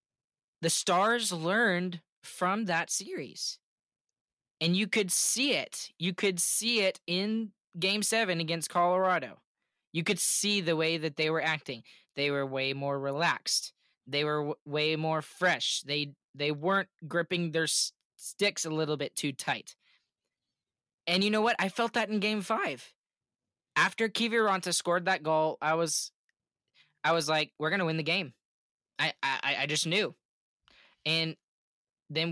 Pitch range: 155-190 Hz